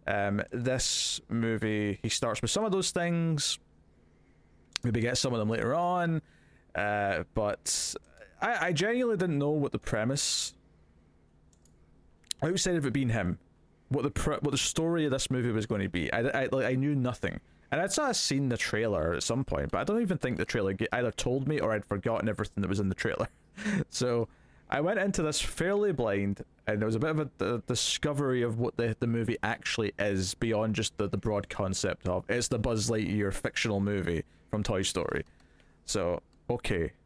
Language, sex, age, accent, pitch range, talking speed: English, male, 20-39, British, 100-135 Hz, 195 wpm